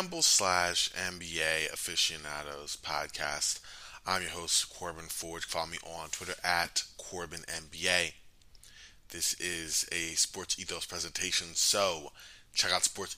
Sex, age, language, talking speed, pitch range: male, 20-39, English, 115 wpm, 80-100 Hz